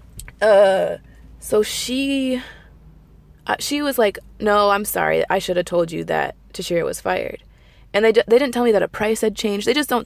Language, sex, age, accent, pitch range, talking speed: English, female, 20-39, American, 175-230 Hz, 195 wpm